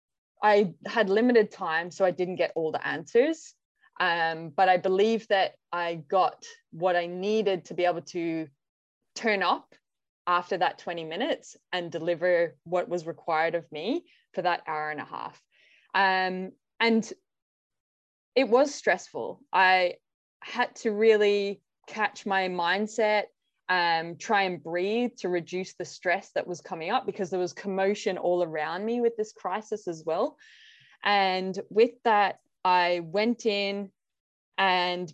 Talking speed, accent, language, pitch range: 145 wpm, Australian, English, 175-220 Hz